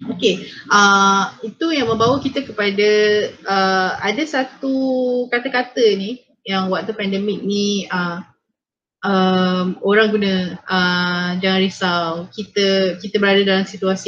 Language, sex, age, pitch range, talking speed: Indonesian, female, 20-39, 190-220 Hz, 120 wpm